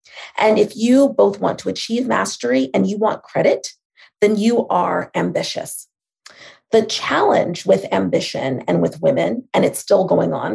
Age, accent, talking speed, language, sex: 30-49, American, 160 wpm, English, female